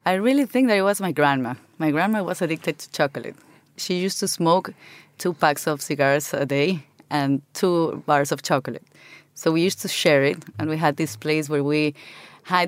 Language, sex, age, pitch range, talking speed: English, female, 30-49, 150-185 Hz, 205 wpm